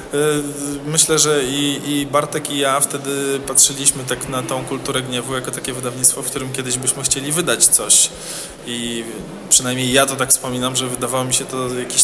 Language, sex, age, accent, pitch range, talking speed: Polish, male, 20-39, native, 125-150 Hz, 180 wpm